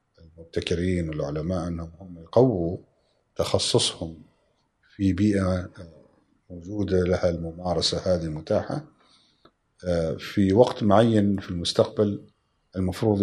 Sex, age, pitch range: male, 50-69, 85-100 Hz